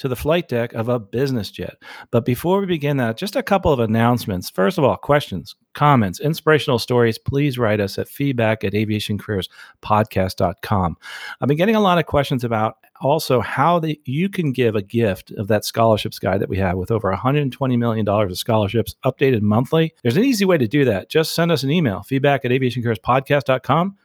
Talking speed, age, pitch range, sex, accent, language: 190 wpm, 40-59, 105-140 Hz, male, American, English